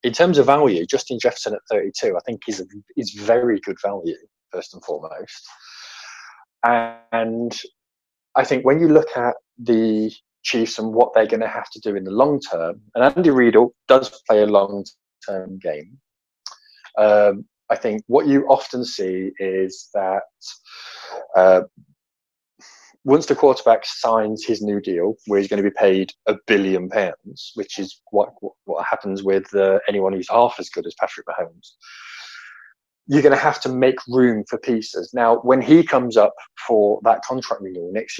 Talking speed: 170 wpm